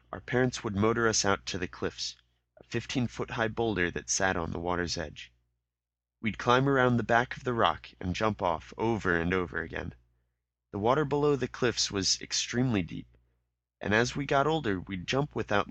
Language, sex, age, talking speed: English, male, 30-49, 185 wpm